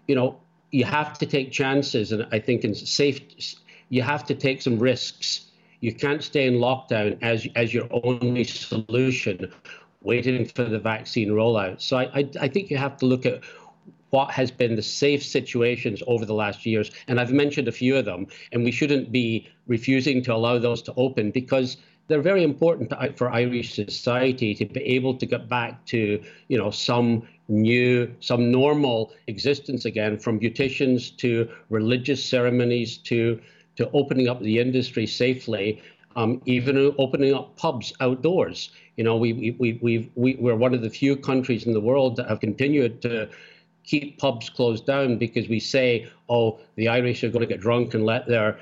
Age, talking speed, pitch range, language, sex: 50-69, 185 wpm, 115-135 Hz, English, male